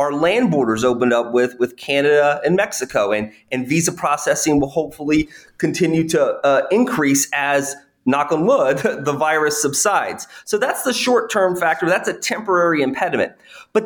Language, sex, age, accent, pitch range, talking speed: English, male, 30-49, American, 145-190 Hz, 165 wpm